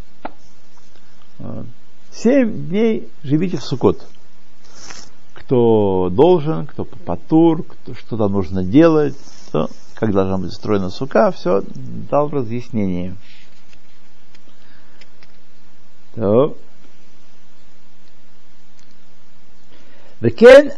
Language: Russian